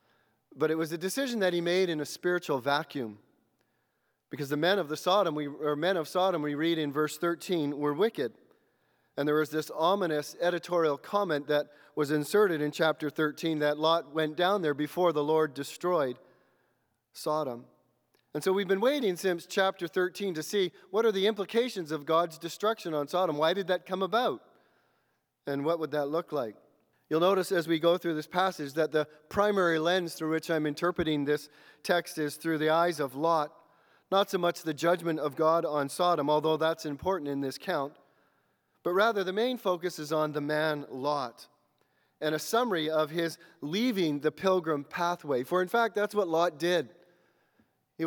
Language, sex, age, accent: English, male, 40-59, American